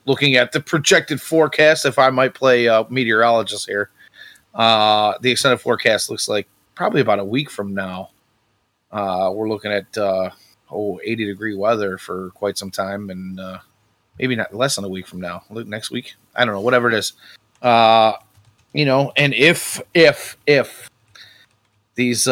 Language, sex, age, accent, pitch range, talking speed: English, male, 30-49, American, 100-125 Hz, 170 wpm